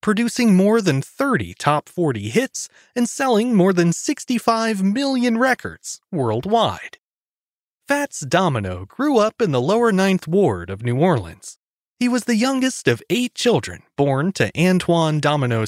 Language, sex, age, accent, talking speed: English, male, 30-49, American, 145 wpm